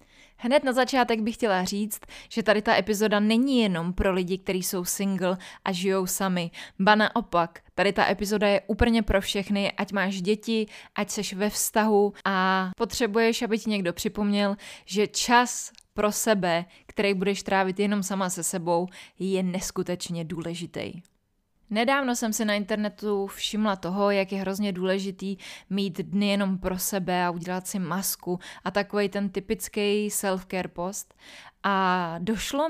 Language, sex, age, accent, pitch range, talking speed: Czech, female, 20-39, native, 185-215 Hz, 155 wpm